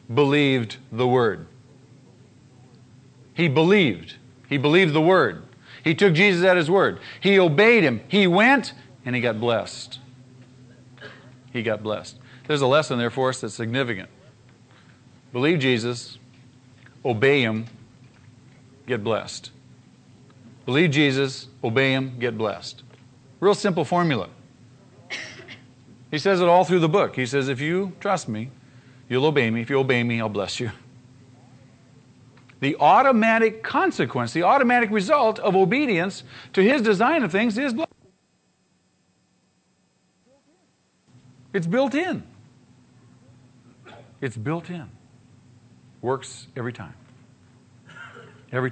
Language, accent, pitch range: English, American, 125-155 Hz